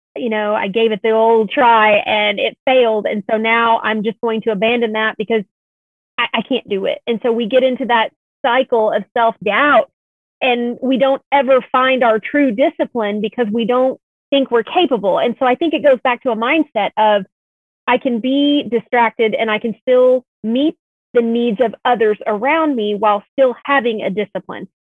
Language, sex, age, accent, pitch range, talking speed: English, female, 30-49, American, 220-265 Hz, 190 wpm